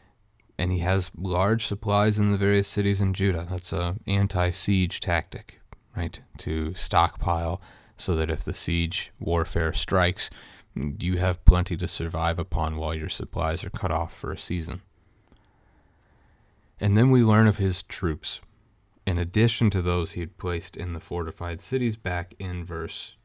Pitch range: 85-105 Hz